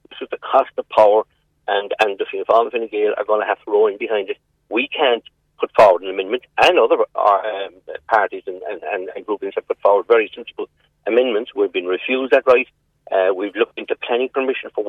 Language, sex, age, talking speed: English, male, 50-69, 210 wpm